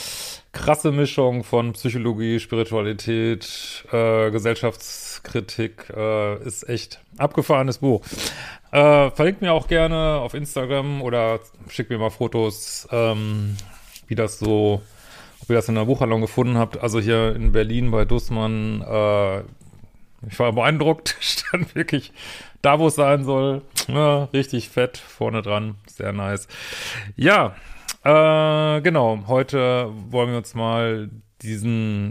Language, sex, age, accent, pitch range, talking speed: German, male, 30-49, German, 110-125 Hz, 130 wpm